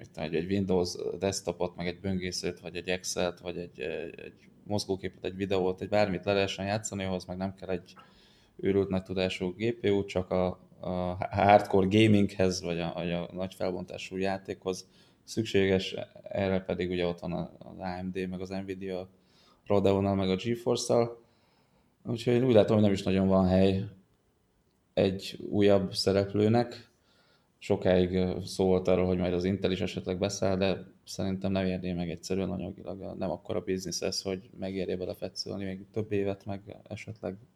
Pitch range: 90-100 Hz